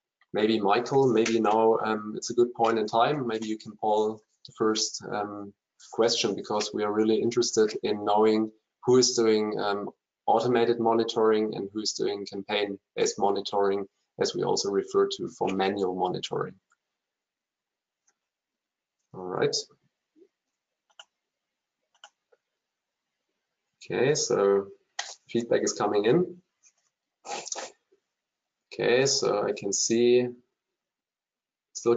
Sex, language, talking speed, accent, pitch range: male, English, 110 wpm, German, 110-150 Hz